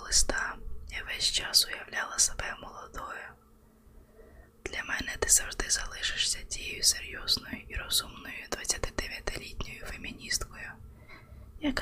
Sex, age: female, 20-39